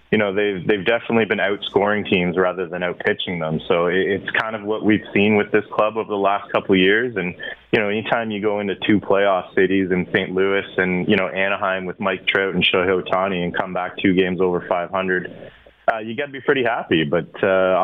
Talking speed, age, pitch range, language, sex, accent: 225 wpm, 20-39, 90-100 Hz, English, male, American